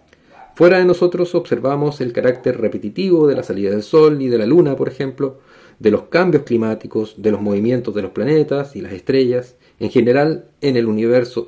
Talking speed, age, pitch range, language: 190 wpm, 40-59, 115-150 Hz, Spanish